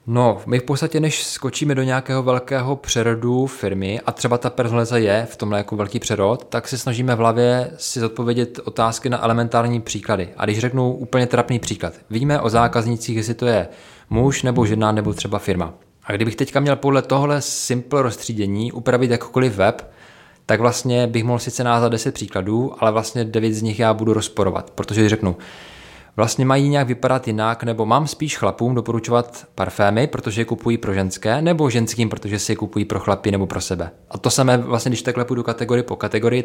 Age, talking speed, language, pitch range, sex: 20-39, 195 wpm, Czech, 110-125 Hz, male